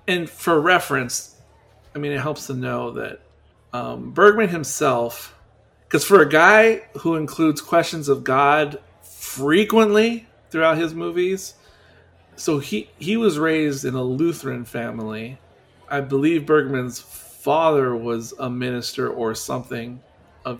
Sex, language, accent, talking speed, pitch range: male, English, American, 130 wpm, 125-160 Hz